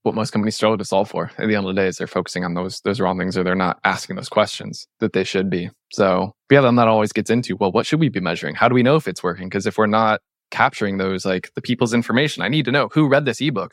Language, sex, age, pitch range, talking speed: English, male, 20-39, 105-130 Hz, 300 wpm